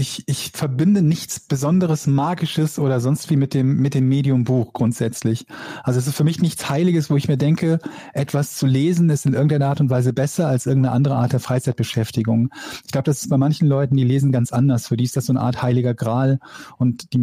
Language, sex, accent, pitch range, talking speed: German, male, German, 125-145 Hz, 225 wpm